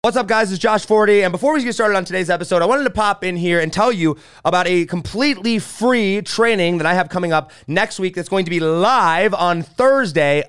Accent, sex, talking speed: American, male, 240 wpm